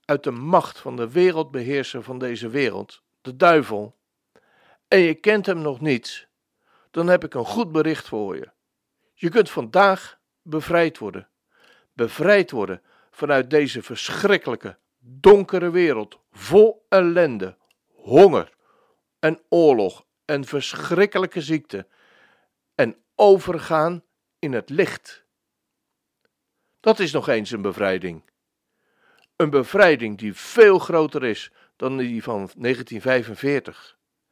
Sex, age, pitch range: male, 60-79, 125-190 Hz